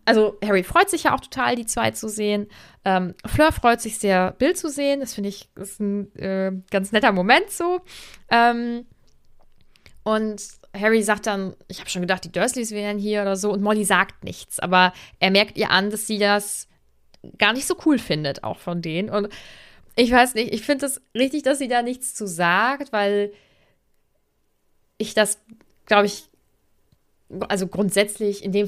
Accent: German